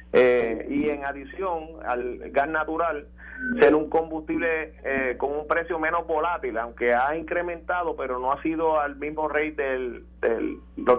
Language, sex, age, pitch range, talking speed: Spanish, male, 30-49, 120-150 Hz, 155 wpm